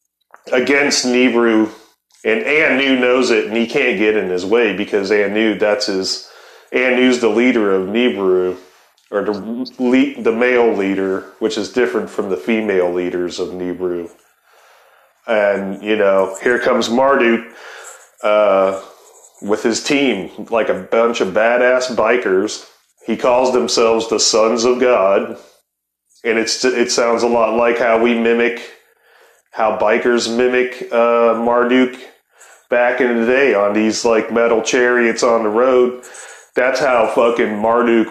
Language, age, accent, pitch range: English, 30-49, American, 110-125 Hz